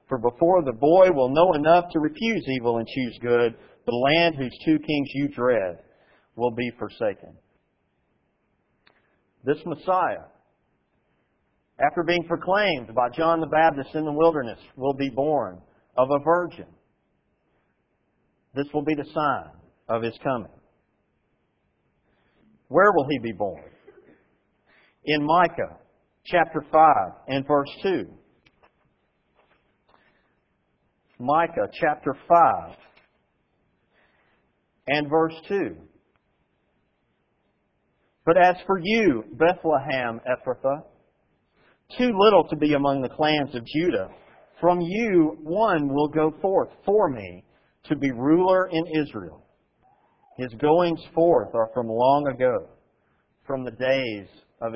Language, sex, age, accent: English, male, 50-69, American